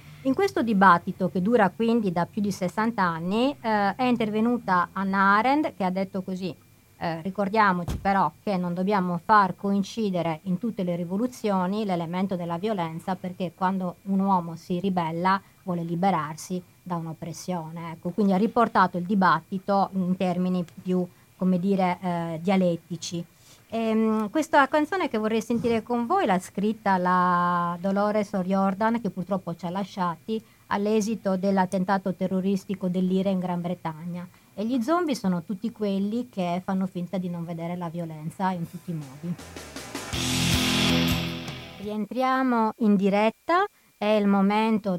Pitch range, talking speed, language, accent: 175-215 Hz, 145 wpm, Italian, native